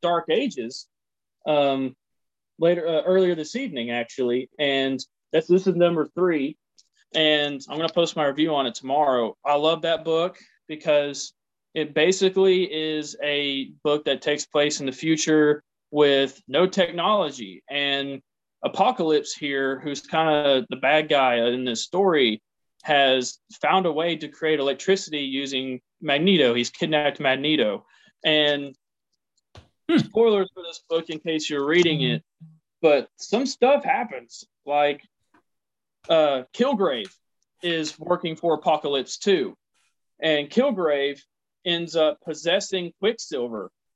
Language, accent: English, American